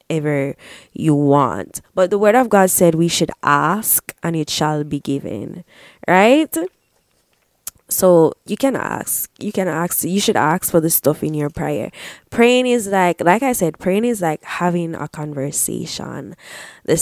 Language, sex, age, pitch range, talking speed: English, female, 20-39, 155-240 Hz, 165 wpm